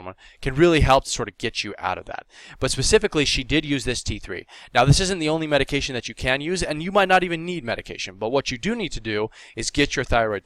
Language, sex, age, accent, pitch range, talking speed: English, male, 20-39, American, 105-140 Hz, 265 wpm